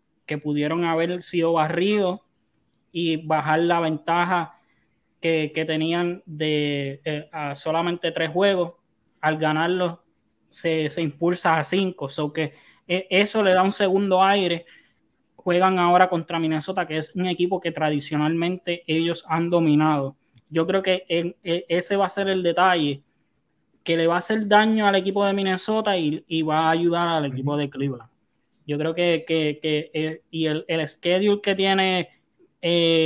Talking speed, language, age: 160 wpm, Spanish, 20-39